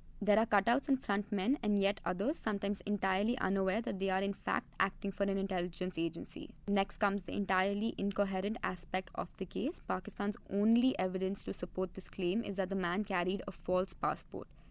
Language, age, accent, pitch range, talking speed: English, 20-39, Indian, 185-215 Hz, 190 wpm